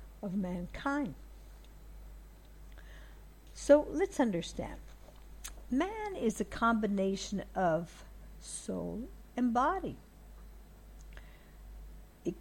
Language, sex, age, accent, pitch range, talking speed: English, female, 60-79, American, 170-230 Hz, 70 wpm